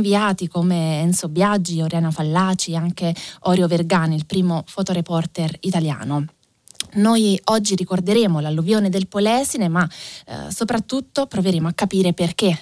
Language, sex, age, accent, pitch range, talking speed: Italian, female, 20-39, native, 165-205 Hz, 130 wpm